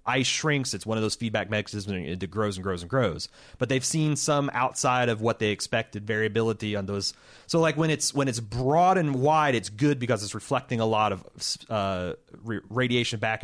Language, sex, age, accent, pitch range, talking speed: English, male, 30-49, American, 110-140 Hz, 210 wpm